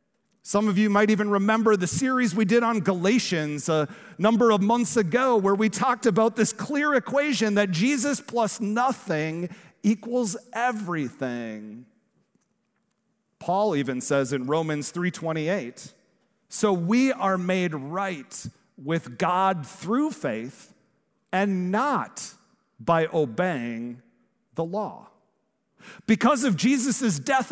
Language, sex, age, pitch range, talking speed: English, male, 40-59, 180-235 Hz, 120 wpm